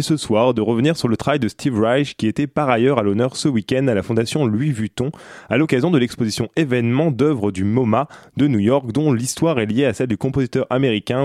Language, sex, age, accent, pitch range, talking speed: French, male, 20-39, French, 115-145 Hz, 240 wpm